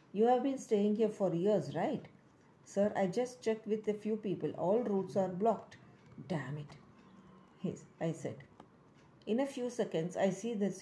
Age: 50-69